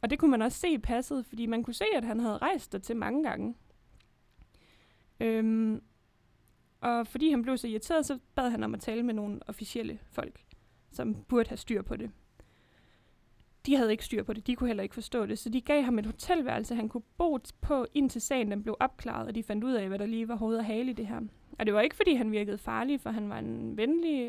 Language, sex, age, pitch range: Danish, female, 20-39, 210-250 Hz